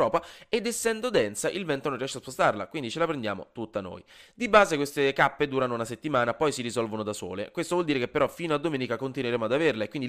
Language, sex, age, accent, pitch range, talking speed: Italian, male, 20-39, native, 110-160 Hz, 240 wpm